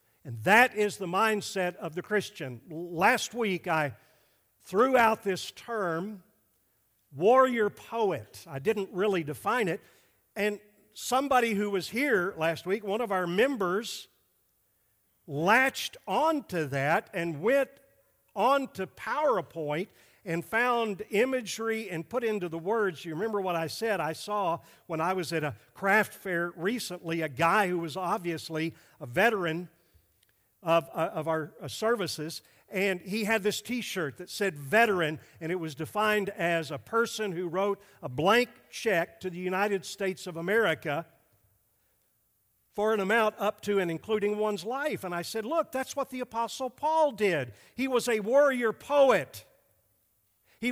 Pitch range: 165-225 Hz